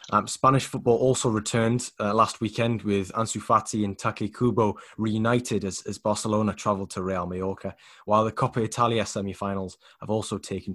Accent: British